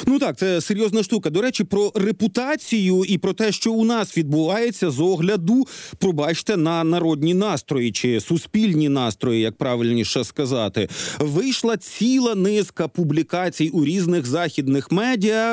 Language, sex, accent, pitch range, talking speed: Ukrainian, male, native, 155-200 Hz, 140 wpm